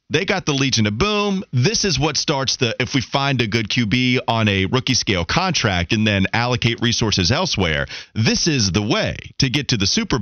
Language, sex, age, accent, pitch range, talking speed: English, male, 30-49, American, 95-135 Hz, 210 wpm